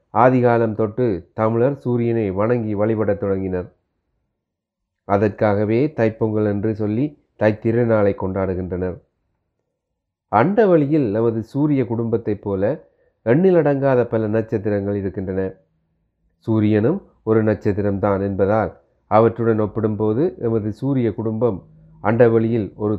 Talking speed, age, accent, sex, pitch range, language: 95 wpm, 30-49, native, male, 100-125 Hz, Tamil